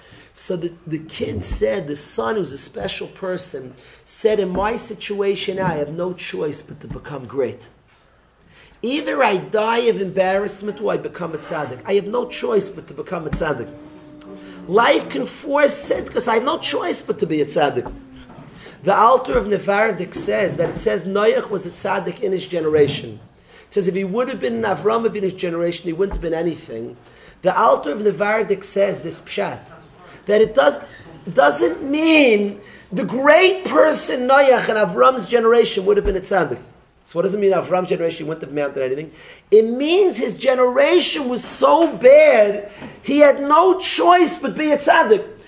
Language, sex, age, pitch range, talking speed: English, male, 40-59, 190-285 Hz, 180 wpm